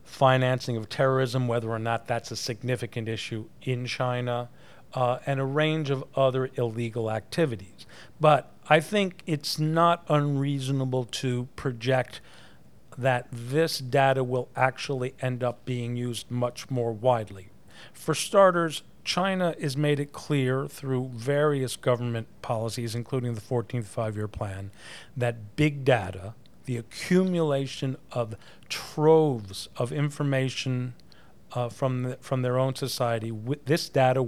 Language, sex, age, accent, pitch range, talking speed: English, male, 40-59, American, 120-140 Hz, 130 wpm